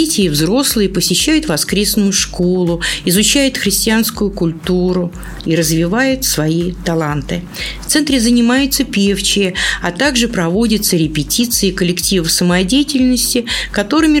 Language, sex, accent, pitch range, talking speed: Russian, female, native, 170-225 Hz, 100 wpm